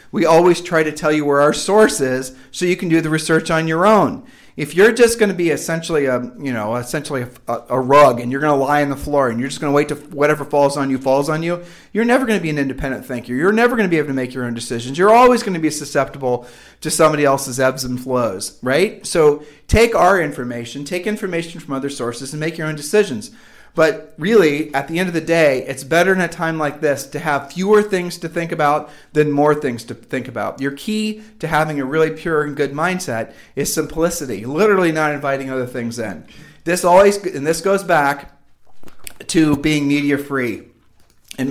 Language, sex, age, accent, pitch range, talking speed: English, male, 40-59, American, 135-170 Hz, 235 wpm